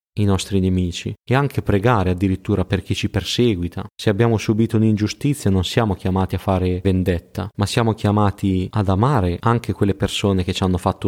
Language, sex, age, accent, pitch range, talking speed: Italian, male, 20-39, native, 95-110 Hz, 180 wpm